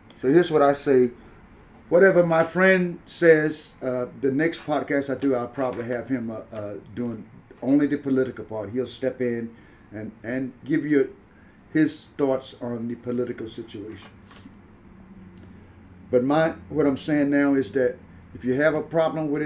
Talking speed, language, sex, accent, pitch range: 165 wpm, English, male, American, 115-140 Hz